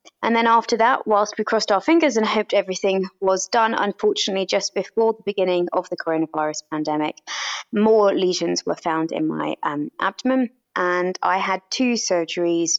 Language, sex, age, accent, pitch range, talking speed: English, female, 20-39, British, 170-210 Hz, 170 wpm